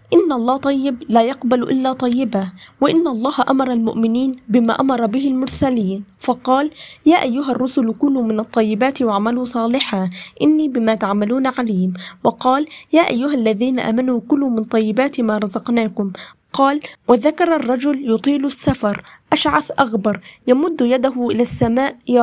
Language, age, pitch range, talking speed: Arabic, 20-39, 230-280 Hz, 135 wpm